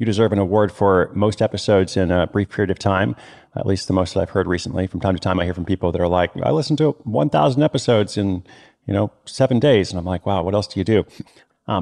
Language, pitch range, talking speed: English, 95-120 Hz, 265 wpm